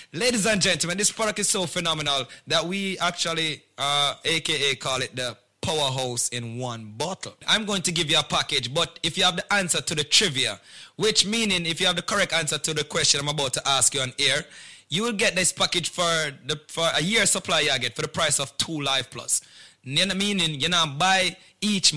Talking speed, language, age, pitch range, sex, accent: 215 wpm, English, 30-49, 150-210 Hz, male, Jamaican